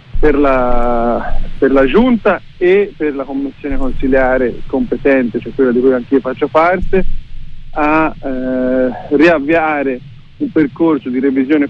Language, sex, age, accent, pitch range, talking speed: Italian, male, 40-59, native, 135-160 Hz, 135 wpm